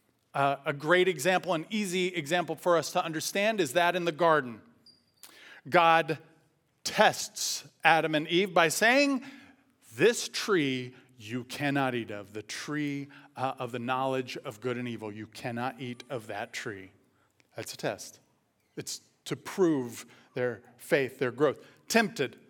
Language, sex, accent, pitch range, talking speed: English, male, American, 125-180 Hz, 150 wpm